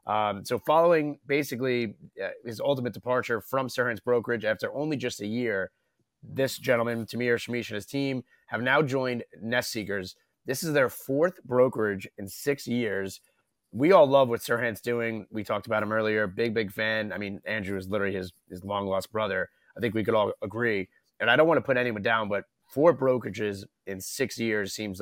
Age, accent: 30-49, American